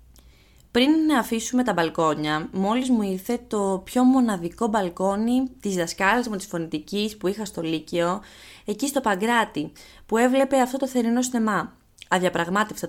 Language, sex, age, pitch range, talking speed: Greek, female, 20-39, 180-260 Hz, 145 wpm